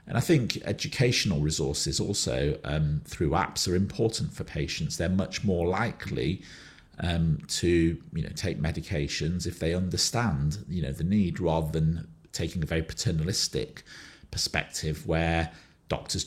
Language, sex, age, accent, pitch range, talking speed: English, male, 40-59, British, 80-90 Hz, 145 wpm